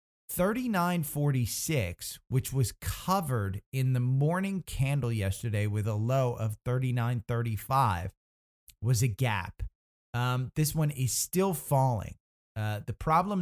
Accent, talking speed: American, 115 wpm